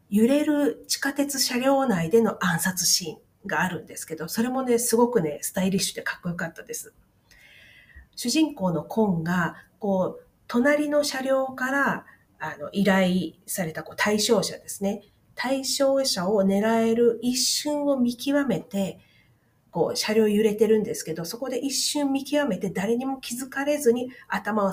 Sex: female